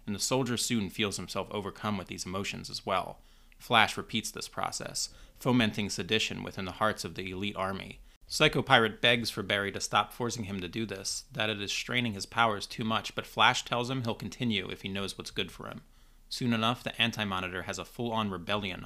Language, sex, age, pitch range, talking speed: English, male, 30-49, 95-115 Hz, 210 wpm